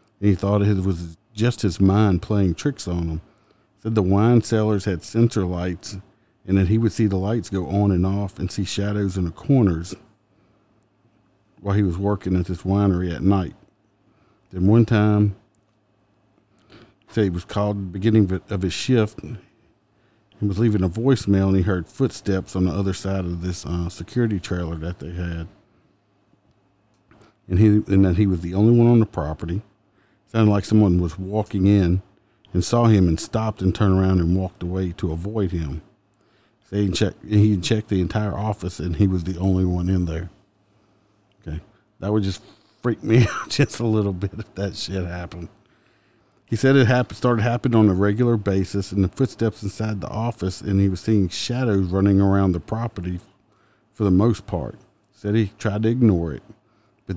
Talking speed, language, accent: 185 wpm, English, American